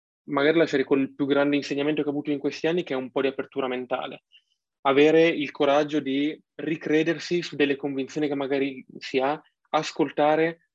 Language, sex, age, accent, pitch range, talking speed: Italian, male, 20-39, native, 135-155 Hz, 190 wpm